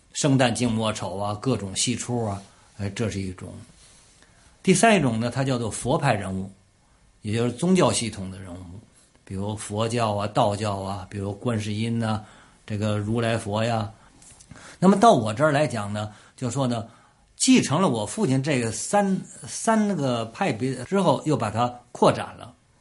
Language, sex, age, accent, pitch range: Chinese, male, 50-69, native, 105-140 Hz